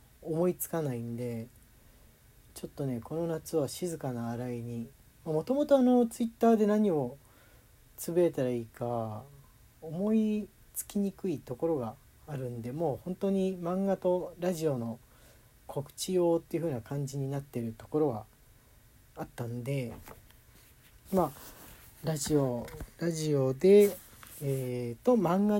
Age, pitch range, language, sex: 40-59, 120-165 Hz, Japanese, male